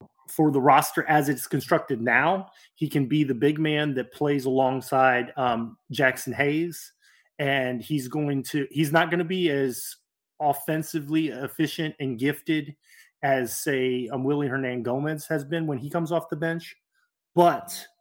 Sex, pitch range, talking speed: male, 130-155 Hz, 160 wpm